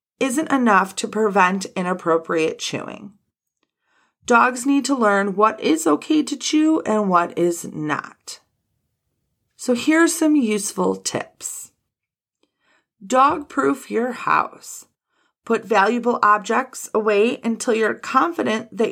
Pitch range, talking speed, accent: 195-255 Hz, 115 wpm, American